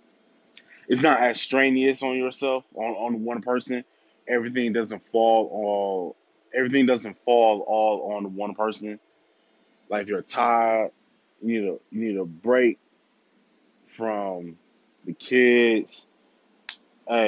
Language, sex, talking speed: English, male, 125 wpm